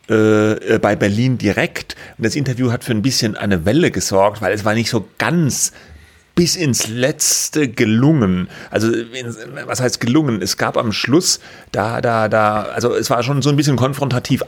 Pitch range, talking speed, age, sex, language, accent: 115-145 Hz, 175 wpm, 30-49, male, German, German